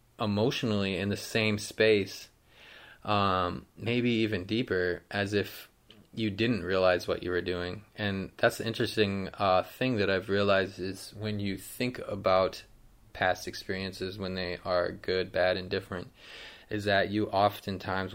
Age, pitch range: 20-39, 95-110 Hz